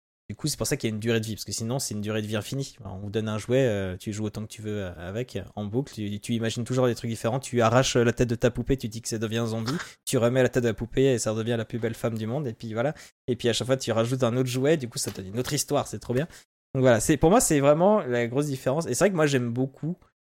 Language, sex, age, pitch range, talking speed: French, male, 20-39, 110-145 Hz, 345 wpm